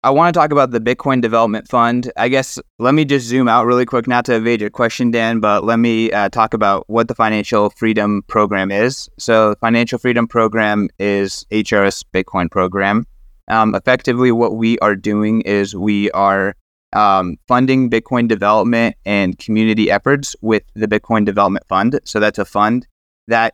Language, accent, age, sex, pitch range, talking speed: English, American, 20-39, male, 100-115 Hz, 180 wpm